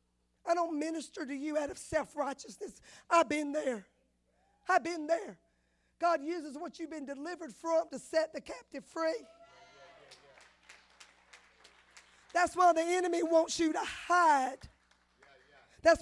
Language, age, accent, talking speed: English, 40-59, American, 130 wpm